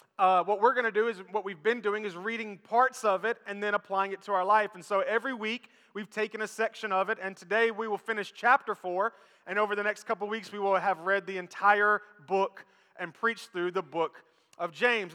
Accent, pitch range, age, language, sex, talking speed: American, 195-235 Hz, 20-39, English, male, 240 wpm